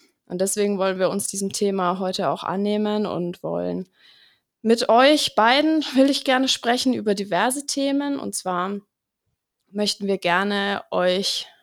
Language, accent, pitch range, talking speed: German, German, 185-225 Hz, 145 wpm